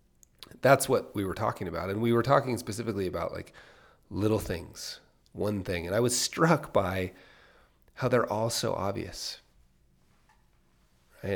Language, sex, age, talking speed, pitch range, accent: English, male, 30-49, 150 wpm, 85-115 Hz, American